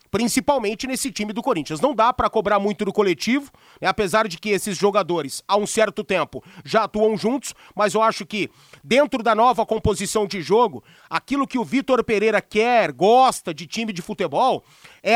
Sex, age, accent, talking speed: male, 30-49, Brazilian, 185 wpm